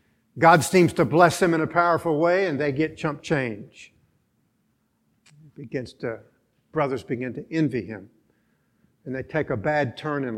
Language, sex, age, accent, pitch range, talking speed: English, male, 60-79, American, 135-175 Hz, 160 wpm